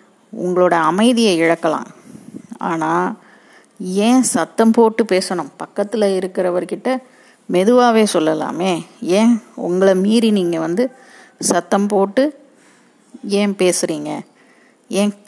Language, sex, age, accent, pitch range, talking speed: Tamil, female, 30-49, native, 175-210 Hz, 85 wpm